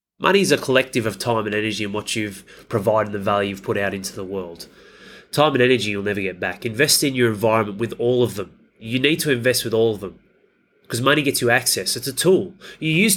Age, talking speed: 30-49, 240 wpm